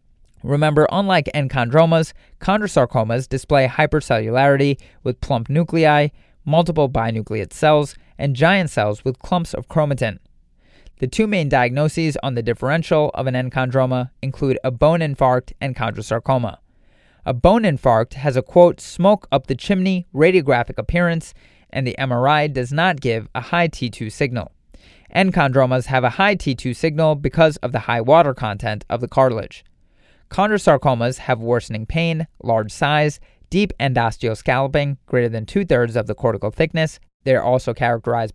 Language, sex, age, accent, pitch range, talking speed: English, male, 30-49, American, 120-155 Hz, 140 wpm